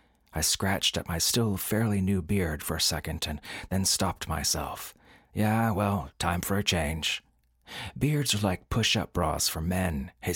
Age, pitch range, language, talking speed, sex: 40-59, 80-105 Hz, English, 170 wpm, male